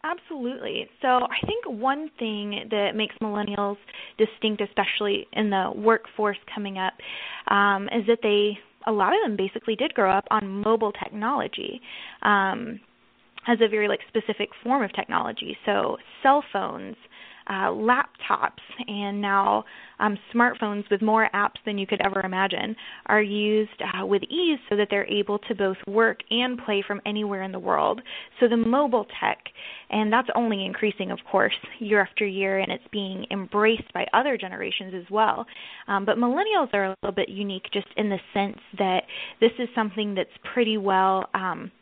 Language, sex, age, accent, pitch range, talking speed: English, female, 10-29, American, 200-235 Hz, 170 wpm